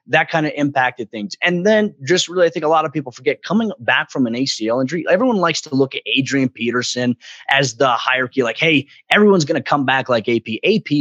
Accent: American